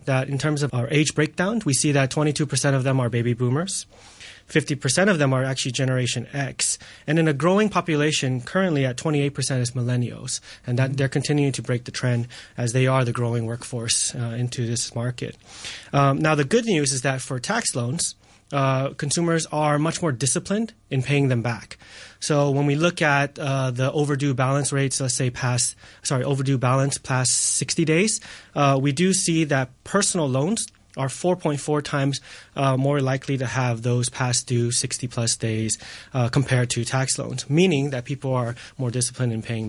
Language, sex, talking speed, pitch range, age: English, male, 185 wpm, 125-150 Hz, 20-39